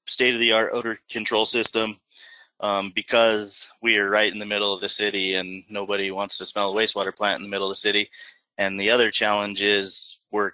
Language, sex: English, male